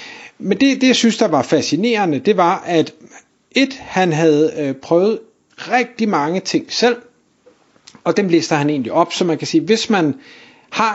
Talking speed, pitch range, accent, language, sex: 185 wpm, 145-180 Hz, native, Danish, male